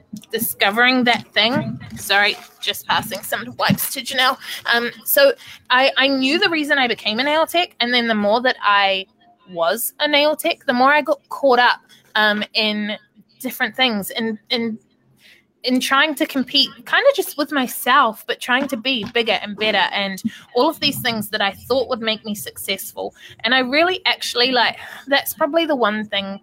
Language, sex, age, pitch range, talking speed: English, female, 20-39, 205-265 Hz, 190 wpm